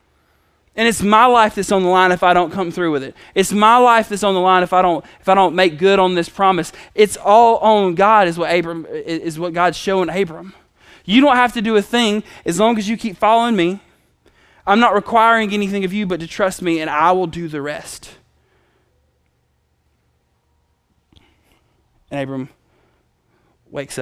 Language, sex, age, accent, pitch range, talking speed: English, male, 20-39, American, 140-190 Hz, 195 wpm